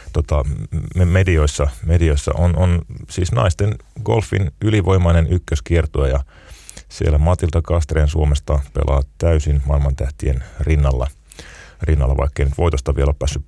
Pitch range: 75-90 Hz